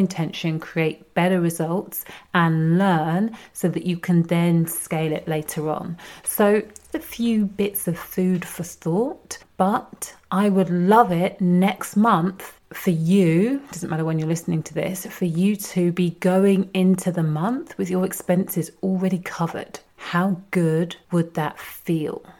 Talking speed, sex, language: 155 wpm, female, English